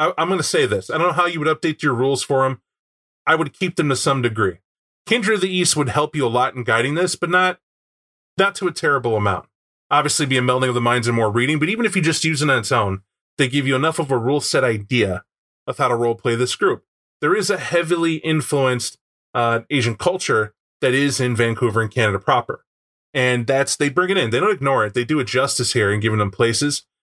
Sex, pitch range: male, 115-150 Hz